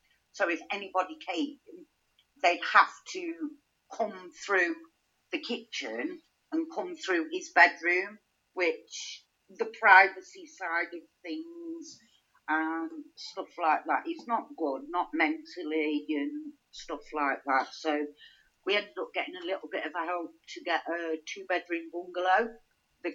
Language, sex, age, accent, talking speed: English, female, 50-69, British, 130 wpm